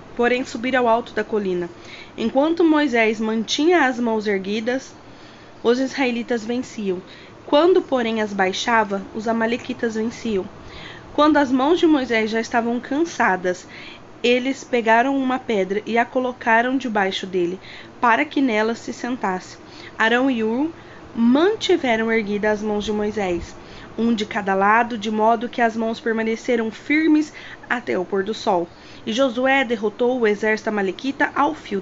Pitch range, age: 215-265 Hz, 20-39